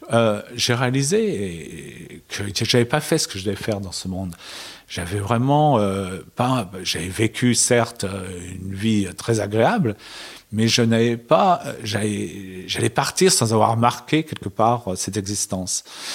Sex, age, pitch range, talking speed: male, 40-59, 100-120 Hz, 150 wpm